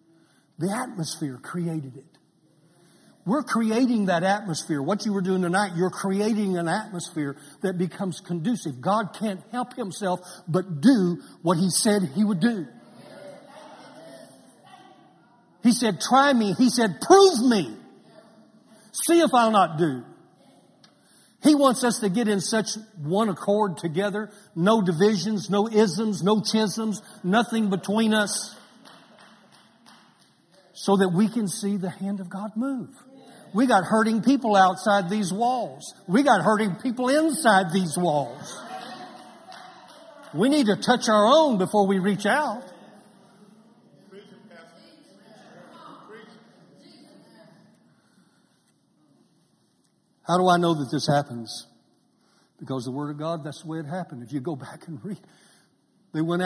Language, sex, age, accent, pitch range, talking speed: English, male, 60-79, American, 170-220 Hz, 130 wpm